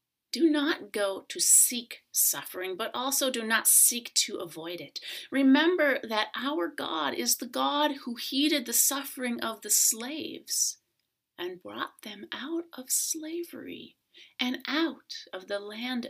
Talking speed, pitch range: 145 wpm, 210-330 Hz